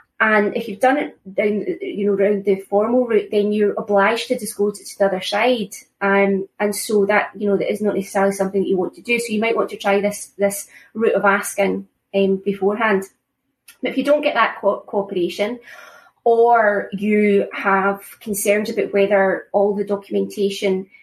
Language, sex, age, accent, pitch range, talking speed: English, female, 20-39, British, 195-215 Hz, 190 wpm